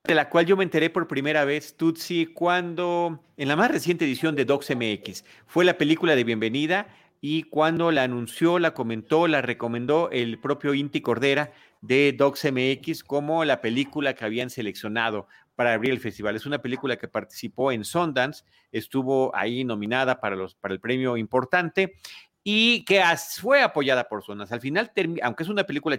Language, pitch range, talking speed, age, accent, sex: Spanish, 125-165 Hz, 180 wpm, 40-59, Mexican, male